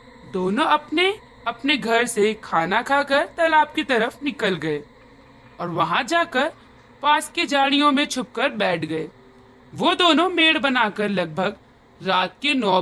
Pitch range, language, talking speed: 185-300 Hz, Hindi, 135 wpm